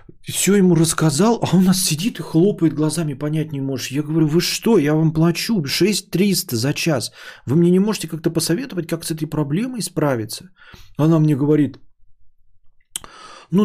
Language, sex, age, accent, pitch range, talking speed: Russian, male, 20-39, native, 115-165 Hz, 165 wpm